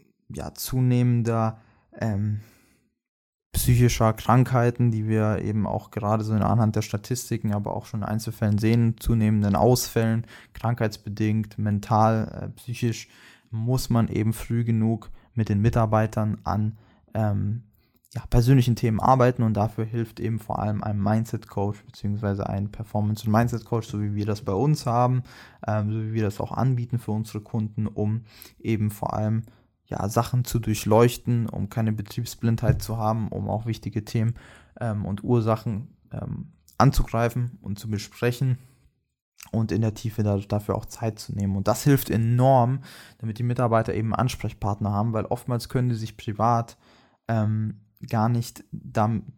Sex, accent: male, German